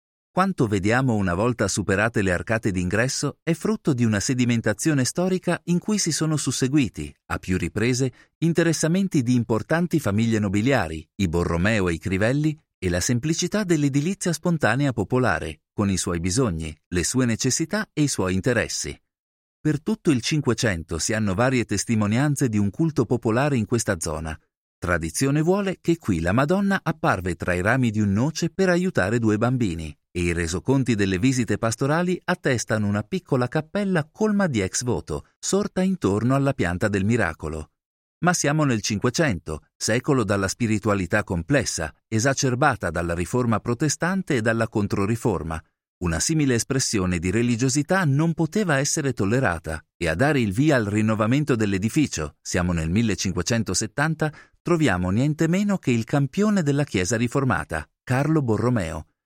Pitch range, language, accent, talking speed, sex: 100-150 Hz, Italian, native, 150 wpm, male